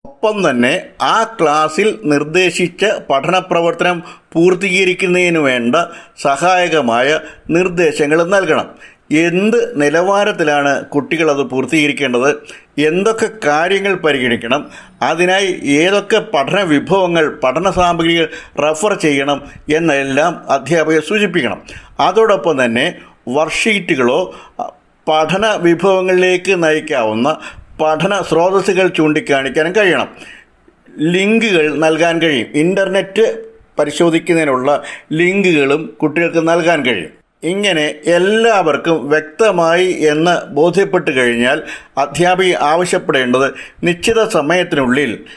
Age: 50-69